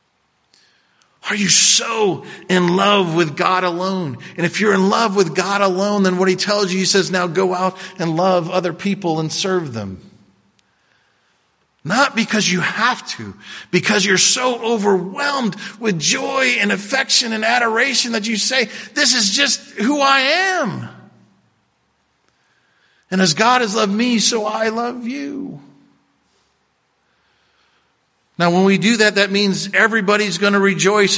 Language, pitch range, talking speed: English, 185-230 Hz, 150 wpm